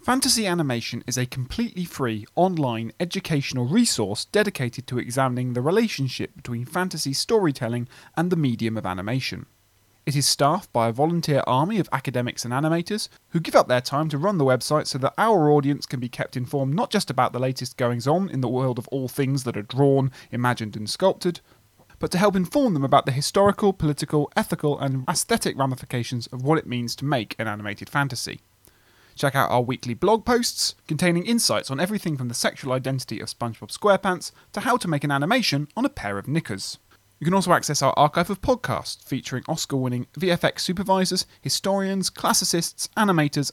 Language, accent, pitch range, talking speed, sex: English, British, 120-175 Hz, 185 wpm, male